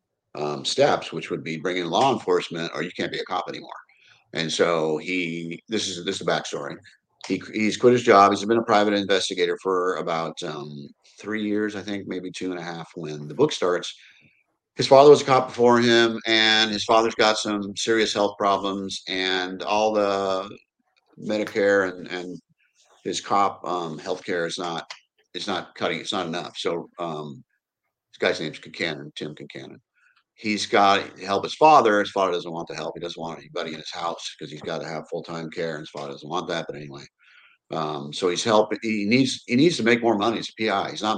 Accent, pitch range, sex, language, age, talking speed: American, 85-105 Hz, male, English, 50-69, 205 wpm